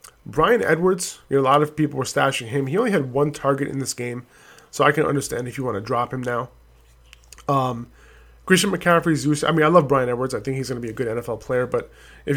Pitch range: 125-150 Hz